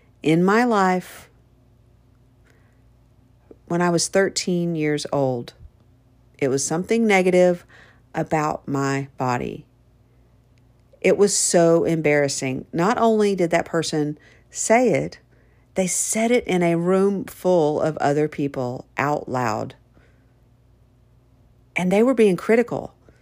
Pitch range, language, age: 125-180 Hz, English, 50-69